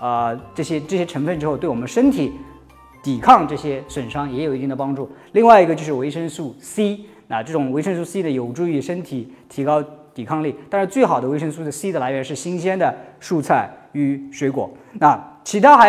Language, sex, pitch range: Chinese, male, 130-175 Hz